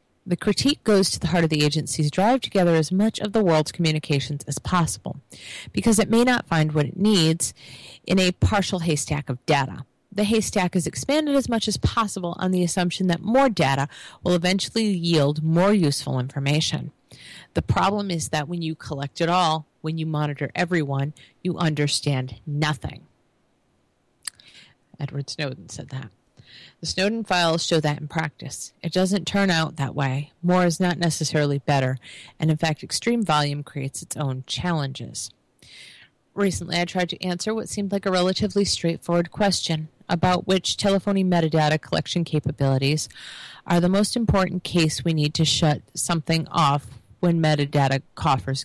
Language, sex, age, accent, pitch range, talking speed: English, female, 40-59, American, 145-185 Hz, 165 wpm